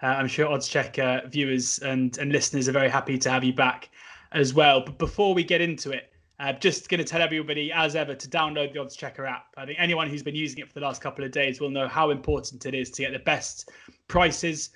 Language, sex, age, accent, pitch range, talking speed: English, male, 20-39, British, 135-155 Hz, 245 wpm